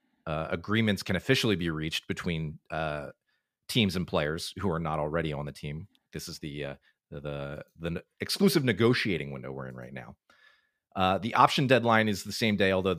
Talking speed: 190 wpm